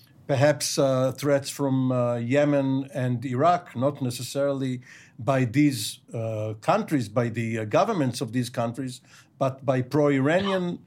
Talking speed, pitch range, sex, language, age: 135 wpm, 130-155 Hz, male, English, 50-69